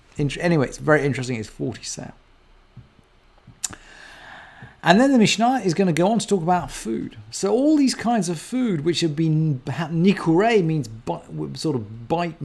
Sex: male